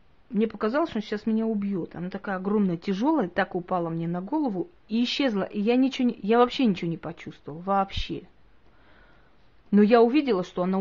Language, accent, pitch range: Russian, native, 180-230 Hz